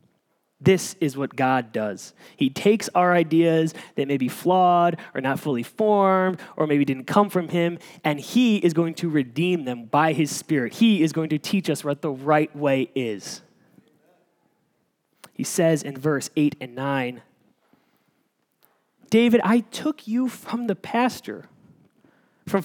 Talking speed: 155 wpm